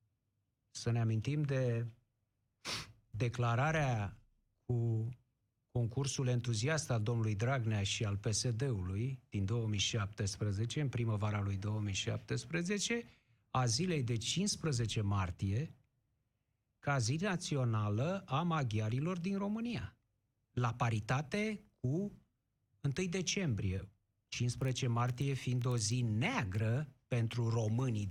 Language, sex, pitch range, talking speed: Romanian, male, 110-135 Hz, 95 wpm